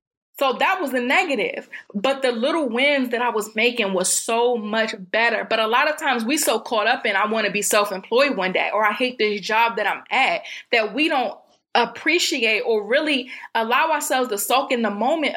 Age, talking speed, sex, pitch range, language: 20-39, 215 wpm, female, 210-260 Hz, English